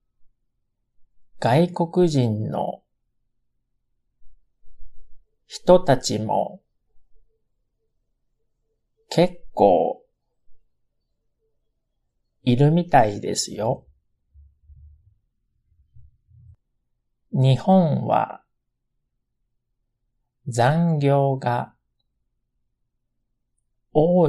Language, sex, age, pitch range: Japanese, male, 50-69, 110-145 Hz